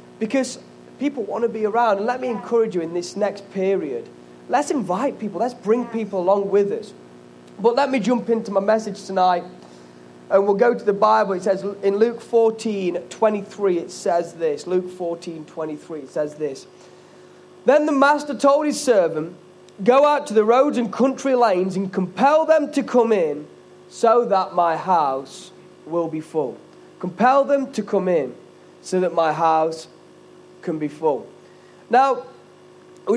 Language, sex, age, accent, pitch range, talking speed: English, male, 30-49, British, 190-255 Hz, 175 wpm